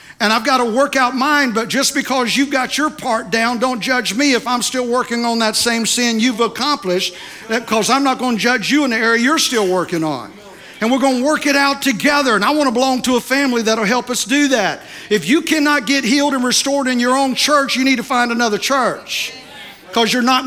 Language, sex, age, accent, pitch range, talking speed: English, male, 50-69, American, 190-260 Hz, 245 wpm